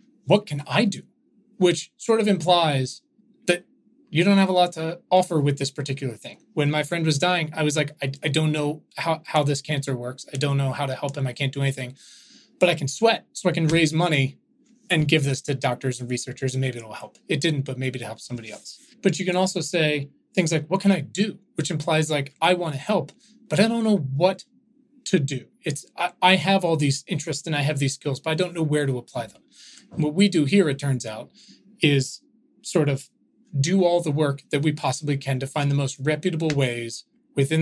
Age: 30-49